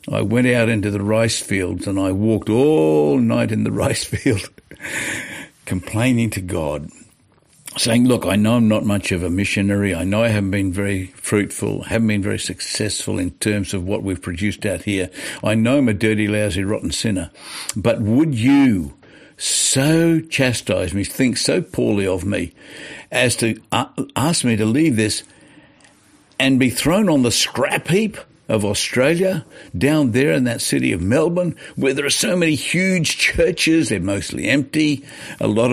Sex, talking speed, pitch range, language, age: male, 170 wpm, 95-130 Hz, English, 60-79